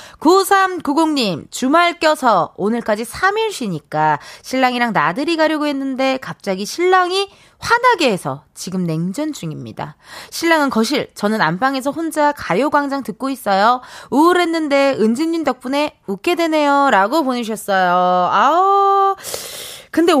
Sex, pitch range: female, 205-320 Hz